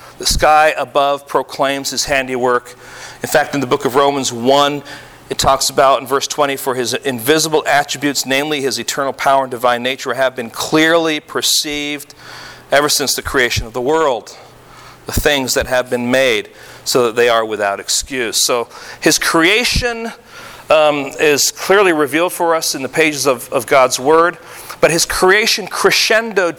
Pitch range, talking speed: 125-155 Hz, 165 wpm